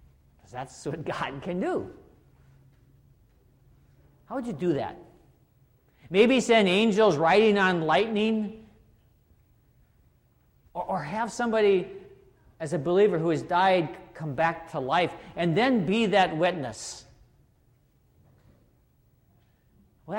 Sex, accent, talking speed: male, American, 105 wpm